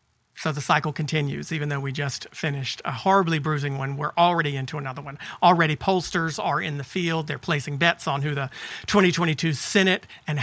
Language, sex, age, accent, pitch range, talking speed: English, male, 40-59, American, 150-185 Hz, 190 wpm